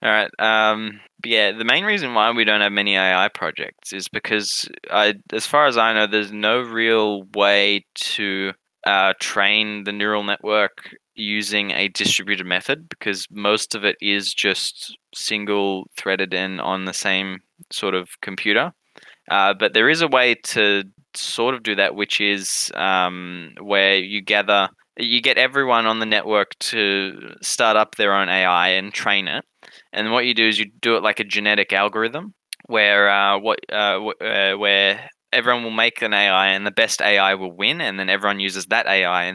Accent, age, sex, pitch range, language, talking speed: Australian, 10-29, male, 95-110 Hz, English, 185 wpm